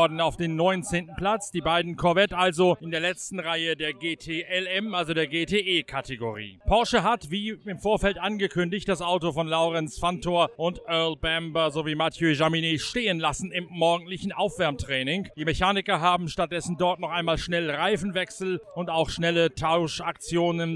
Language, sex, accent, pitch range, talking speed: German, male, German, 155-185 Hz, 155 wpm